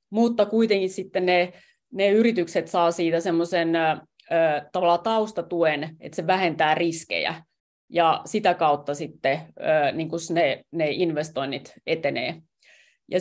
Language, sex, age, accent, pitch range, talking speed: Finnish, female, 30-49, native, 165-205 Hz, 115 wpm